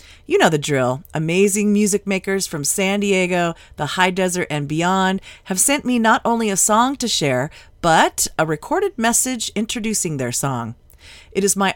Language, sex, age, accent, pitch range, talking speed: English, female, 40-59, American, 160-225 Hz, 175 wpm